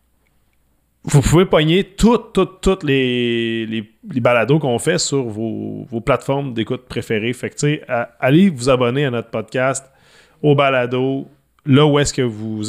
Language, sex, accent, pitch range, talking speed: French, male, Canadian, 120-155 Hz, 160 wpm